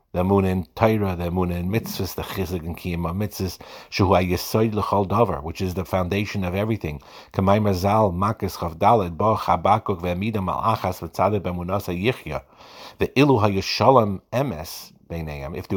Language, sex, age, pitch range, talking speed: English, male, 50-69, 90-110 Hz, 60 wpm